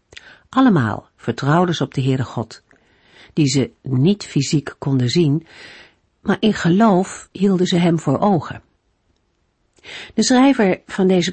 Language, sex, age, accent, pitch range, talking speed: Dutch, female, 50-69, Dutch, 135-195 Hz, 130 wpm